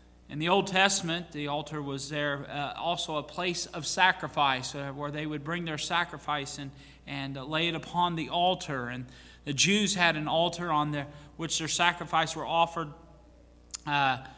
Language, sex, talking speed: English, male, 180 wpm